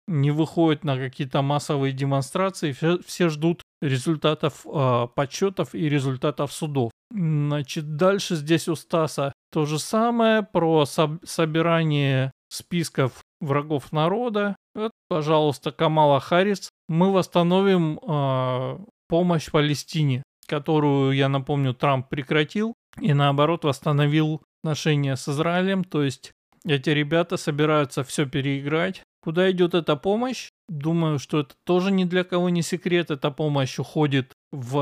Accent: native